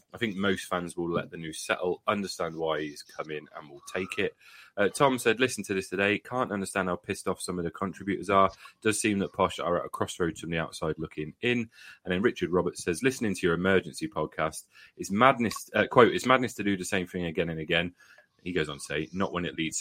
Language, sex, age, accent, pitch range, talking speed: English, male, 30-49, British, 85-100 Hz, 245 wpm